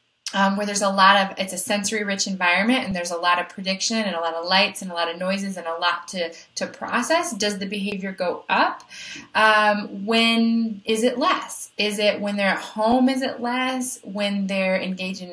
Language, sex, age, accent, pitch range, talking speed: English, female, 20-39, American, 195-240 Hz, 215 wpm